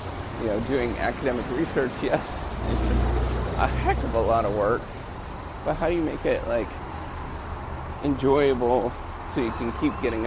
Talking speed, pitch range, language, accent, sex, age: 160 wpm, 90-125 Hz, English, American, male, 30-49